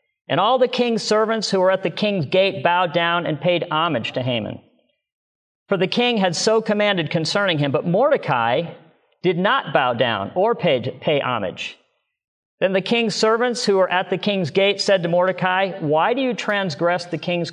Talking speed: 190 wpm